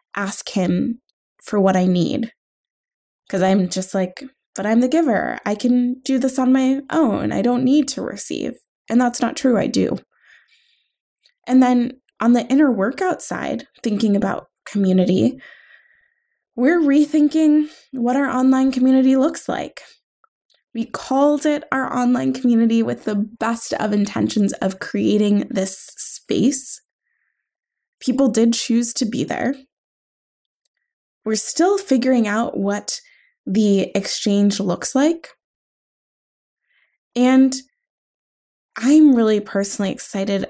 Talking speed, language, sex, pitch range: 125 wpm, English, female, 210-290 Hz